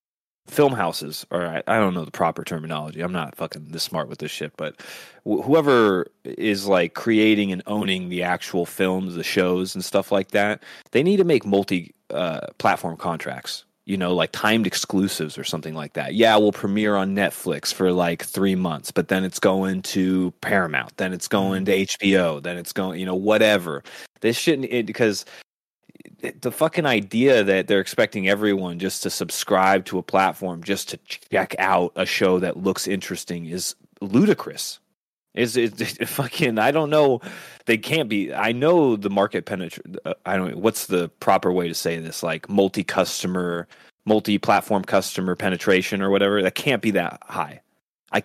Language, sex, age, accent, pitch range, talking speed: English, male, 30-49, American, 90-105 Hz, 180 wpm